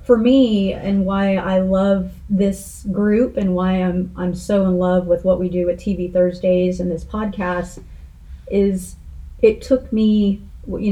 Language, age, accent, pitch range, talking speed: English, 30-49, American, 180-205 Hz, 165 wpm